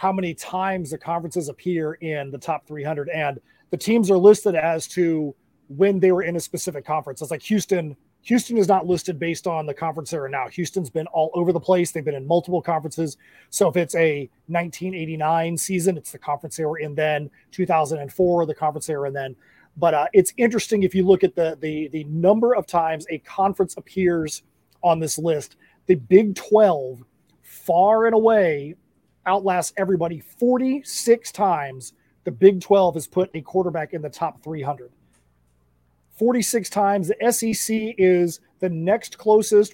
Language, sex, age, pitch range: English, male, 30-49, 155-195 Hz